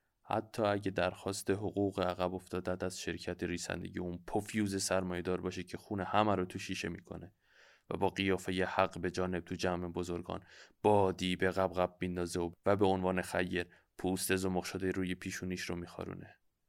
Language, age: Persian, 20-39